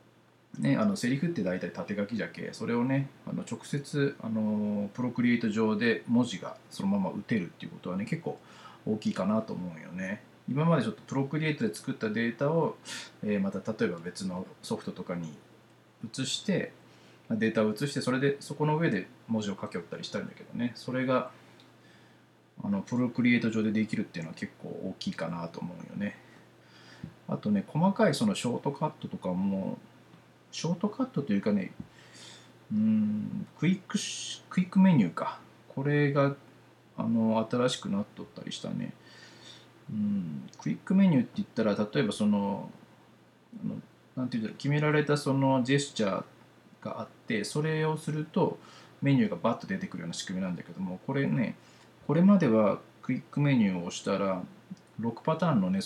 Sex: male